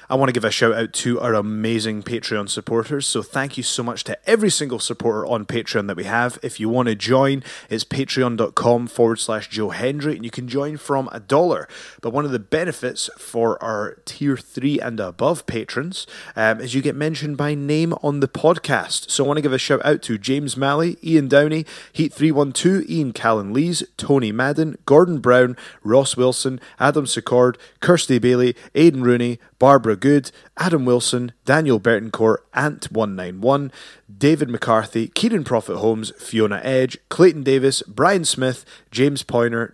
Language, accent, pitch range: English, British, 115-145 Hz